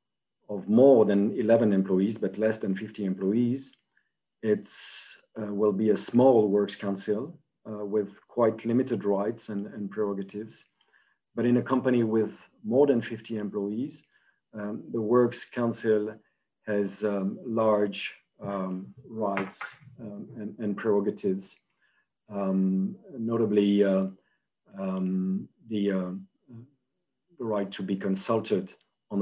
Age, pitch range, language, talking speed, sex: 40-59, 95-120 Hz, English, 120 wpm, male